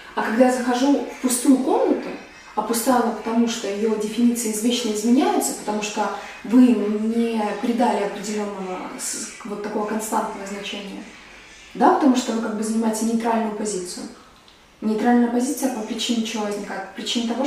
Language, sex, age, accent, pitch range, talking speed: Russian, female, 20-39, native, 215-250 Hz, 150 wpm